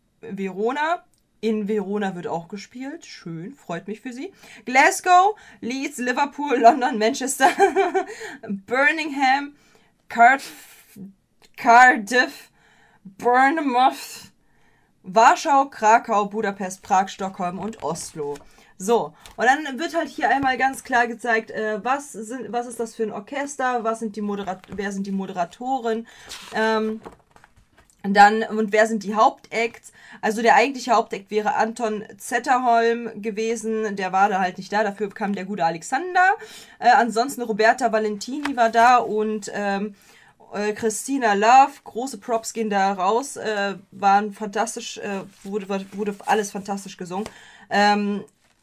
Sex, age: female, 20-39